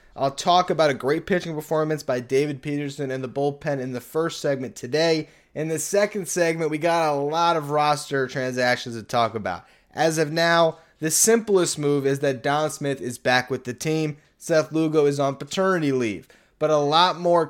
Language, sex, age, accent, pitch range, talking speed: English, male, 20-39, American, 135-165 Hz, 195 wpm